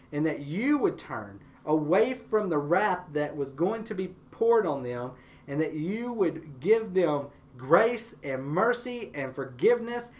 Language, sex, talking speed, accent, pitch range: English, male, 165 wpm, American, 140-200 Hz